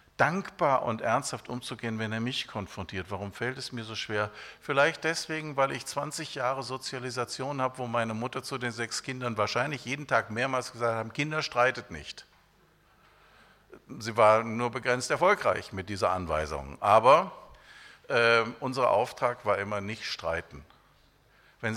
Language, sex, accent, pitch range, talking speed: German, male, German, 95-120 Hz, 150 wpm